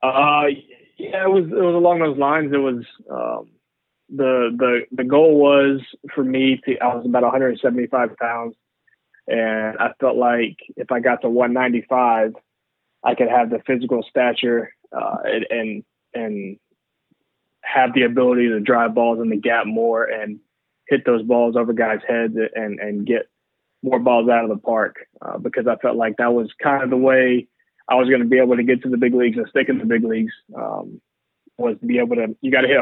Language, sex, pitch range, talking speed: English, male, 115-135 Hz, 195 wpm